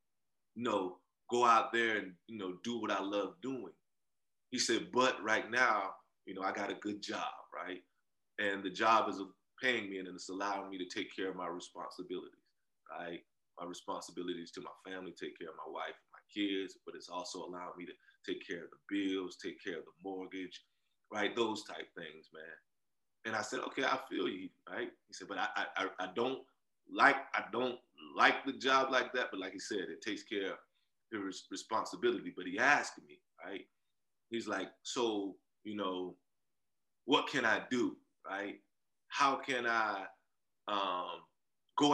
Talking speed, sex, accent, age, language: 185 wpm, male, American, 20-39, English